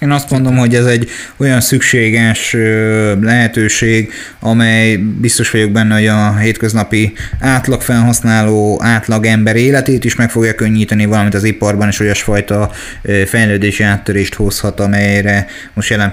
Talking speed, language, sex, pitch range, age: 125 wpm, Hungarian, male, 105-120 Hz, 30-49